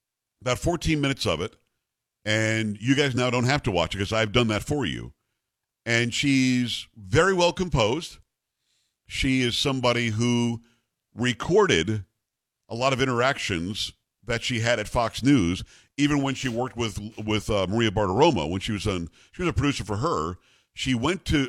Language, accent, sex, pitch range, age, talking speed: English, American, male, 110-135 Hz, 50-69, 175 wpm